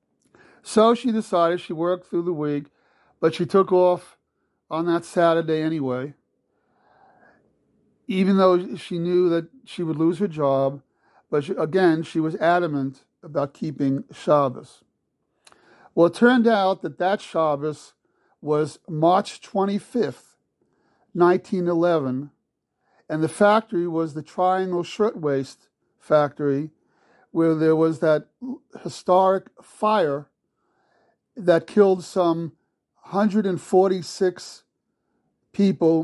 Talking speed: 105 wpm